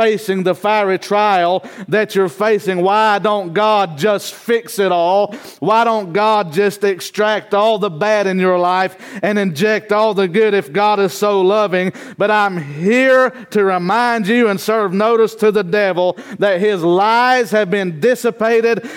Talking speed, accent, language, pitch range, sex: 170 wpm, American, English, 205-250 Hz, male